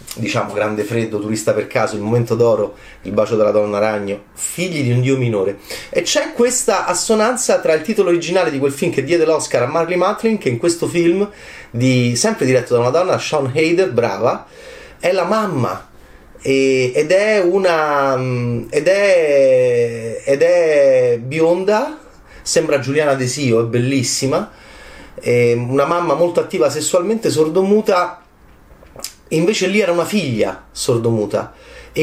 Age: 30-49